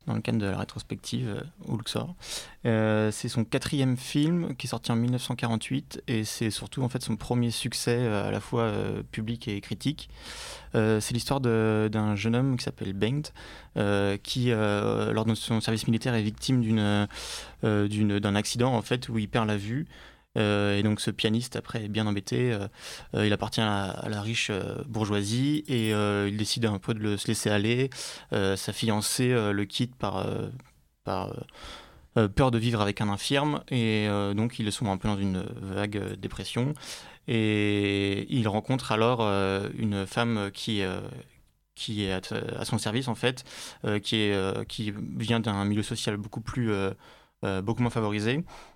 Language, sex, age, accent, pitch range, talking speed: French, male, 20-39, French, 105-120 Hz, 195 wpm